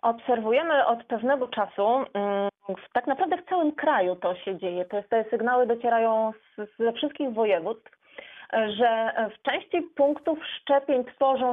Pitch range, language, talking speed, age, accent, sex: 215-275 Hz, Polish, 125 wpm, 30-49, native, female